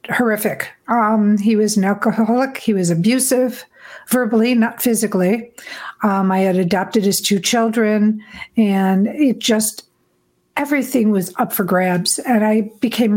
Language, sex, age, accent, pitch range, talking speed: English, female, 60-79, American, 195-230 Hz, 135 wpm